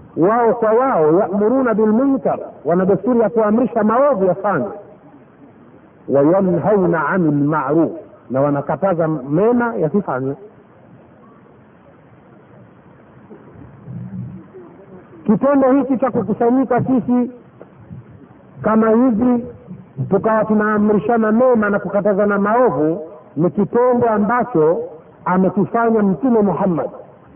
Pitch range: 185-240 Hz